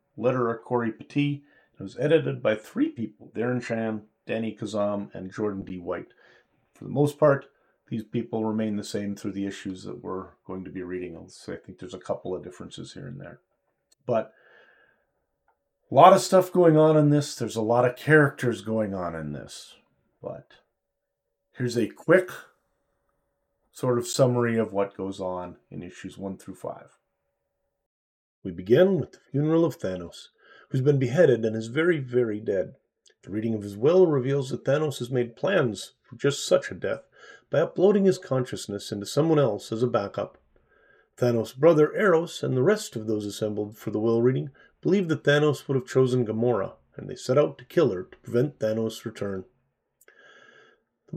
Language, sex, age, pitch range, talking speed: English, male, 40-59, 105-145 Hz, 180 wpm